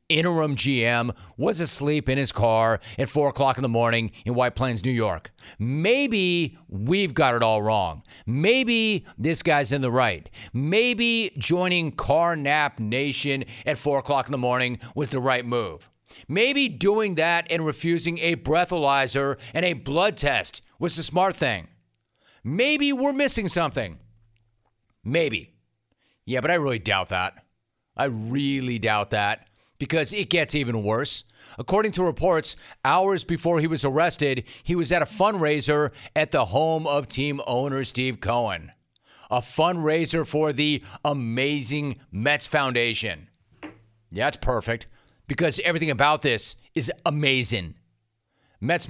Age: 40-59